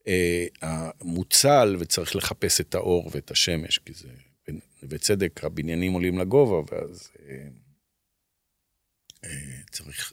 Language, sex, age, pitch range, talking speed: Hebrew, male, 50-69, 90-130 Hz, 105 wpm